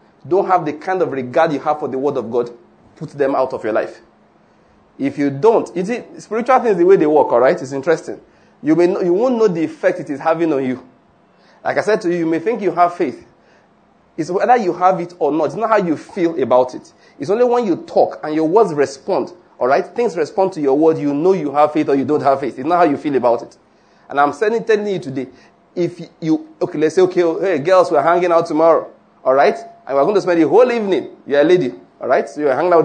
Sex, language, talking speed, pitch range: male, English, 250 wpm, 150-210 Hz